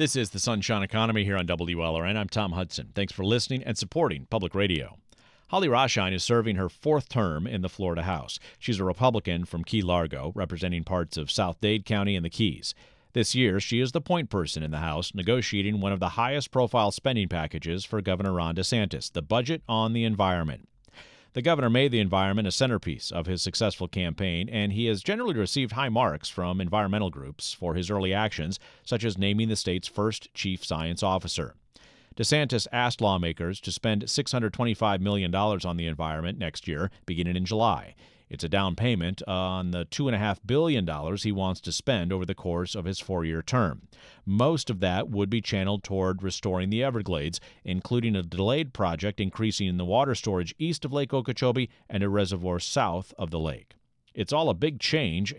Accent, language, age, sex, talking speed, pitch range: American, English, 40-59, male, 185 wpm, 90-115 Hz